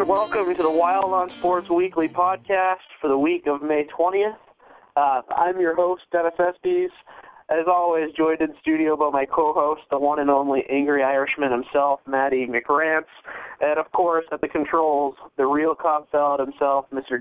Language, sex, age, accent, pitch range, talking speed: English, male, 20-39, American, 140-170 Hz, 170 wpm